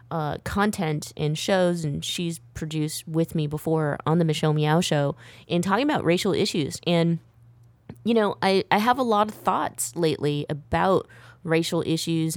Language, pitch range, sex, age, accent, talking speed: English, 145-170 Hz, female, 20-39, American, 165 wpm